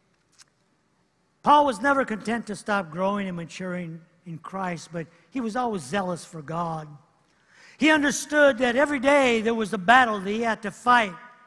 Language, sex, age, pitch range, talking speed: English, male, 60-79, 195-250 Hz, 165 wpm